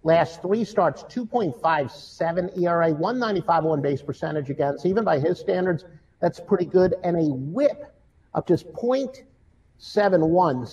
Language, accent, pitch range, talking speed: English, American, 165-220 Hz, 125 wpm